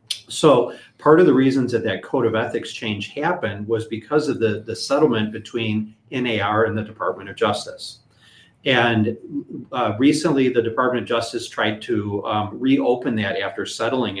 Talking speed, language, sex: 165 wpm, English, male